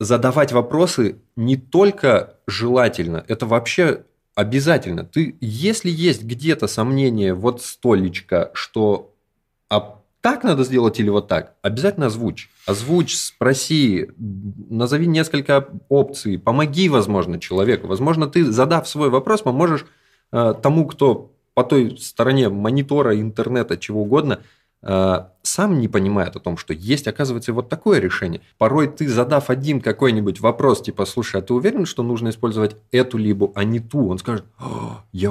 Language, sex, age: Russian, male, 20-39